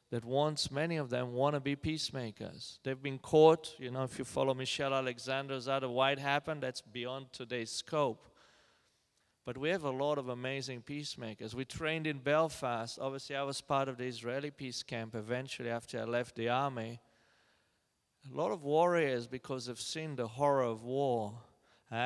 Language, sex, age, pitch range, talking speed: English, male, 40-59, 120-145 Hz, 175 wpm